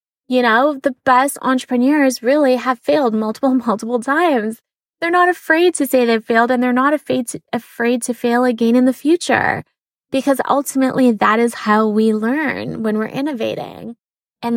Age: 20-39